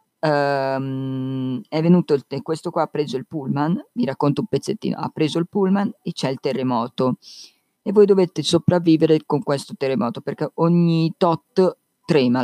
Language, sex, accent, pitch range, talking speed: Italian, female, native, 140-195 Hz, 160 wpm